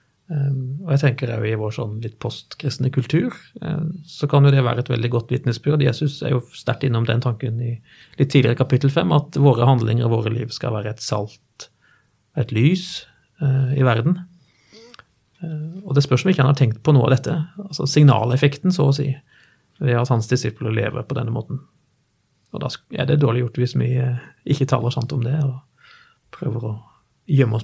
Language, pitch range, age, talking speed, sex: English, 120-145 Hz, 30-49, 200 wpm, male